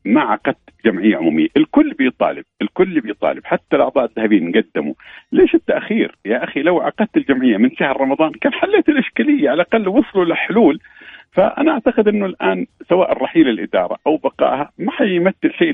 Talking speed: 155 wpm